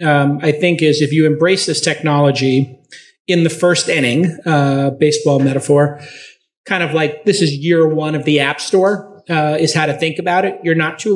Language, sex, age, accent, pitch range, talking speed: English, male, 30-49, American, 150-180 Hz, 200 wpm